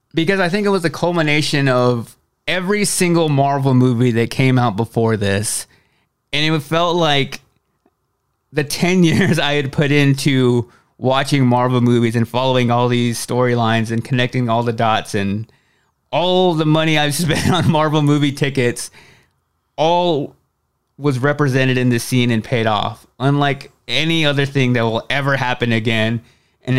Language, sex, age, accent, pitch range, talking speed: English, male, 30-49, American, 120-150 Hz, 155 wpm